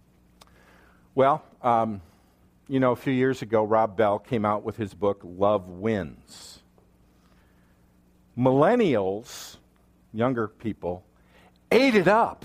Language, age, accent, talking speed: English, 50-69, American, 110 wpm